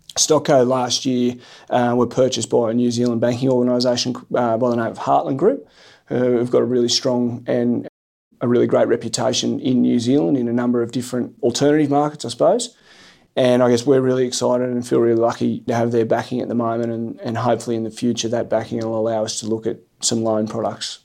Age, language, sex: 30-49, English, male